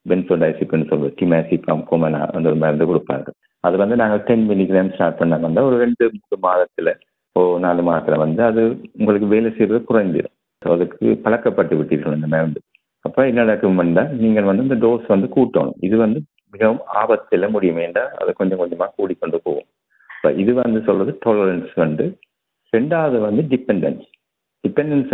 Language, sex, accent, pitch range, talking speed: Tamil, male, native, 90-115 Hz, 155 wpm